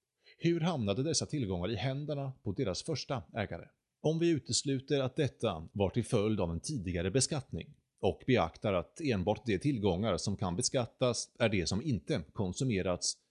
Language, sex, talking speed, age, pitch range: Swedish, male, 160 wpm, 30-49, 100-135 Hz